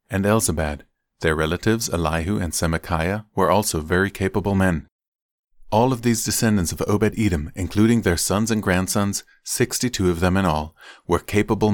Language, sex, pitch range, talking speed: English, male, 85-100 Hz, 155 wpm